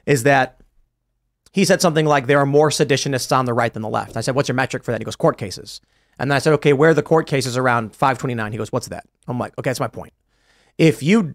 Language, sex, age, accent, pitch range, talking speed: English, male, 30-49, American, 130-160 Hz, 270 wpm